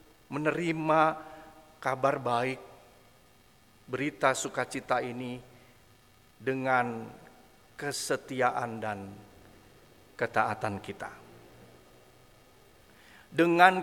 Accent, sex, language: native, male, Indonesian